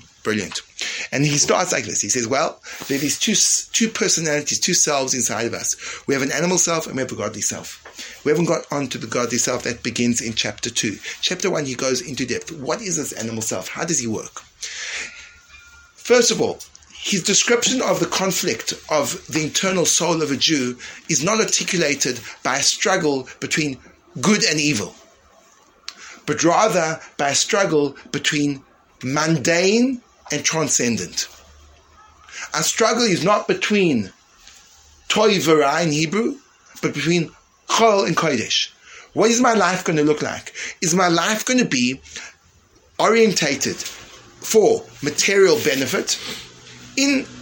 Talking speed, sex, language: 160 wpm, male, English